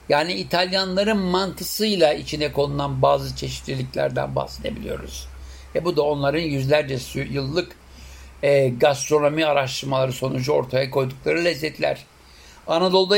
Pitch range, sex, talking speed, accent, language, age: 130-160 Hz, male, 100 wpm, Turkish, German, 60-79